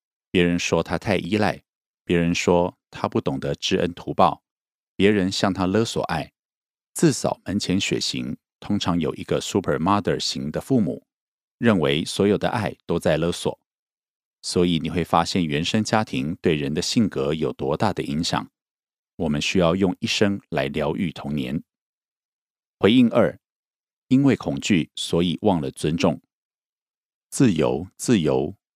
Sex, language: male, Korean